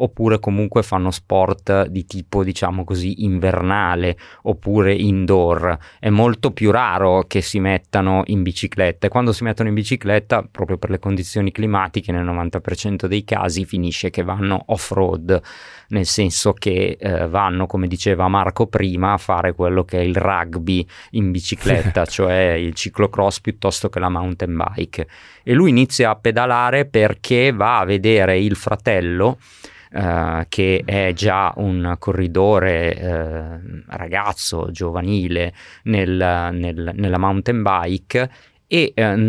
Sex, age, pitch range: male, 20-39, 90-110 Hz